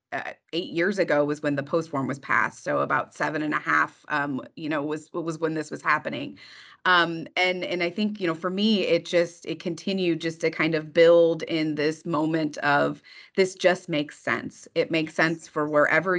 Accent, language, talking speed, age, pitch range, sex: American, English, 210 wpm, 30-49, 155-195 Hz, female